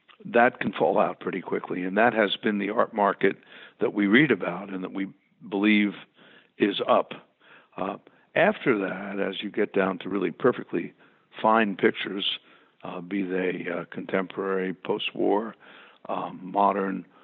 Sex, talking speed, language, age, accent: male, 145 wpm, English, 60-79, American